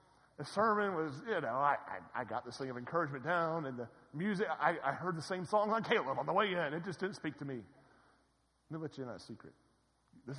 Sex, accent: male, American